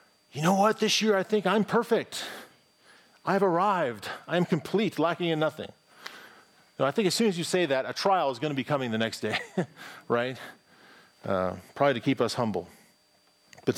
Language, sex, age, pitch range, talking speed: English, male, 40-59, 110-150 Hz, 185 wpm